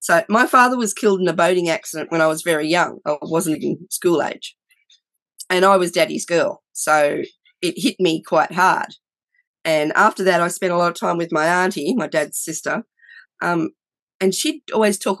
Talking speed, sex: 195 wpm, female